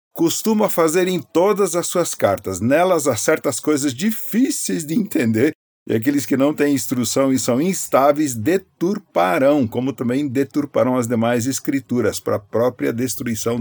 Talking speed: 150 wpm